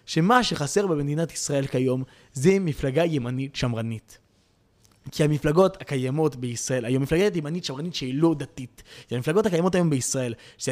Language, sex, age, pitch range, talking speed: Hebrew, male, 20-39, 130-180 Hz, 145 wpm